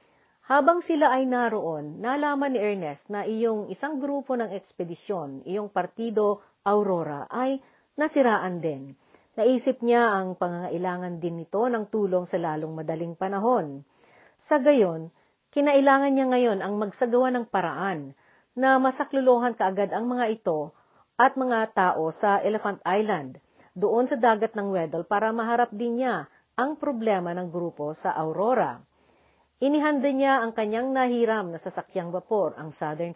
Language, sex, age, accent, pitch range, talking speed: Filipino, female, 50-69, native, 180-245 Hz, 140 wpm